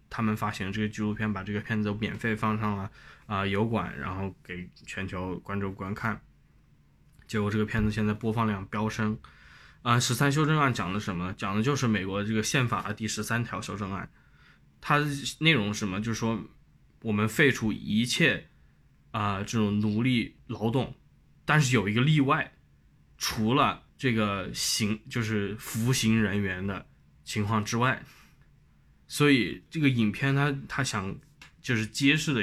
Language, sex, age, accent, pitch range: Chinese, male, 20-39, native, 105-125 Hz